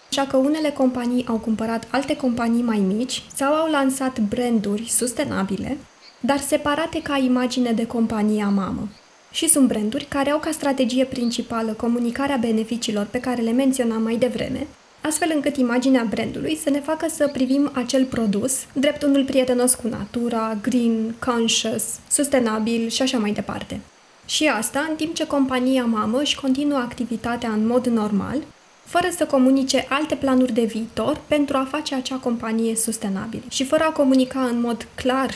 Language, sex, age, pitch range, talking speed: Romanian, female, 20-39, 230-280 Hz, 160 wpm